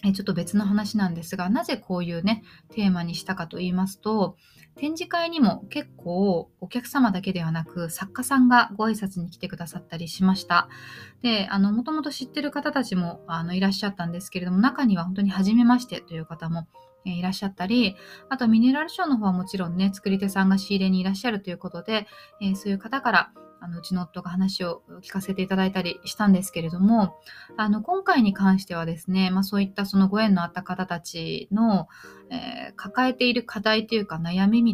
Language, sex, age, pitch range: Japanese, female, 20-39, 180-225 Hz